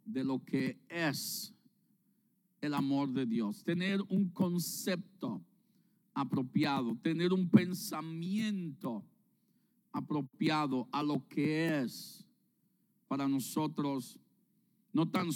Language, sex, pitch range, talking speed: Spanish, male, 155-210 Hz, 95 wpm